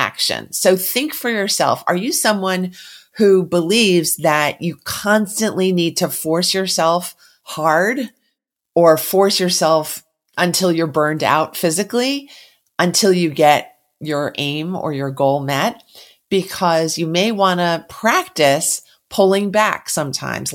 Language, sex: English, female